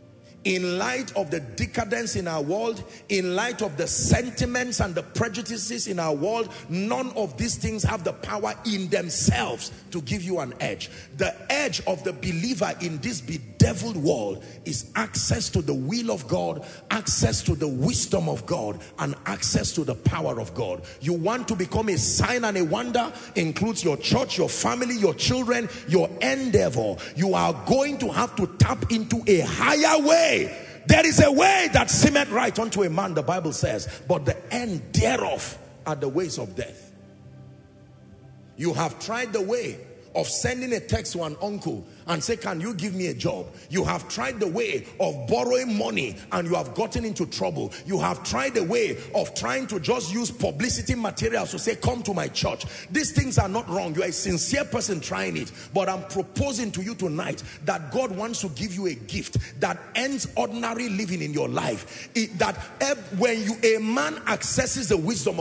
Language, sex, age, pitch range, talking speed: English, male, 40-59, 175-240 Hz, 190 wpm